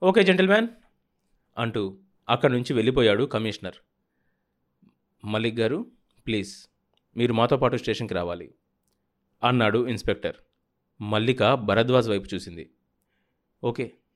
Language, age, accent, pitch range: Telugu, 30-49, native, 100-145 Hz